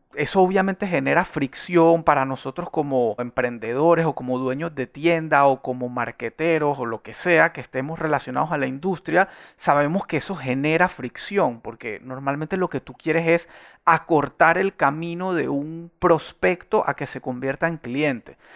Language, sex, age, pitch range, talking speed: Spanish, male, 30-49, 135-170 Hz, 160 wpm